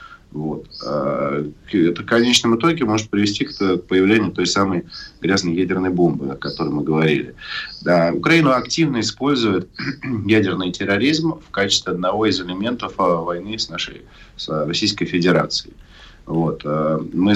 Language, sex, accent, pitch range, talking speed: Russian, male, native, 85-105 Hz, 130 wpm